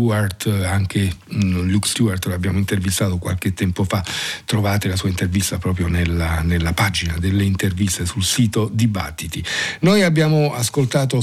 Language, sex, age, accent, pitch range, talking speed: Italian, male, 50-69, native, 100-125 Hz, 130 wpm